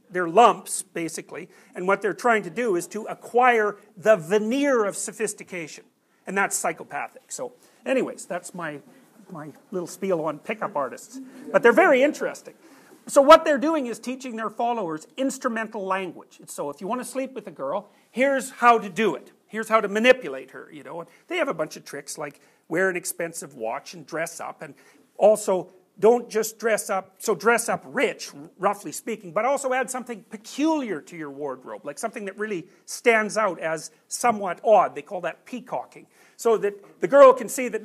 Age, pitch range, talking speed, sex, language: 40-59, 185-250 Hz, 185 wpm, male, English